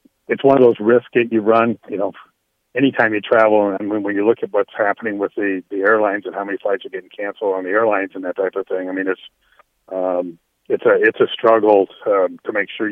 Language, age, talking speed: English, 40-59, 255 wpm